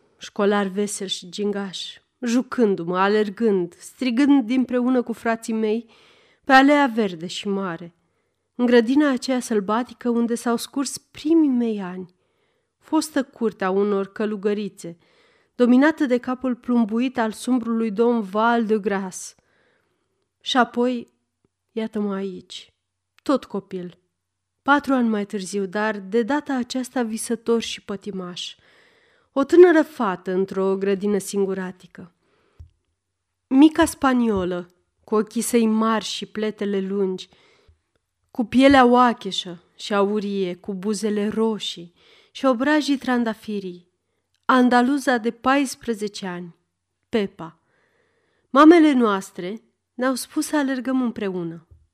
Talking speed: 110 wpm